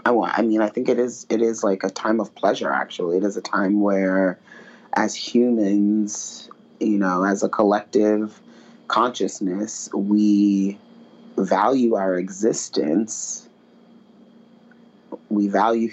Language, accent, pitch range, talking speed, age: English, American, 100-120 Hz, 120 wpm, 30-49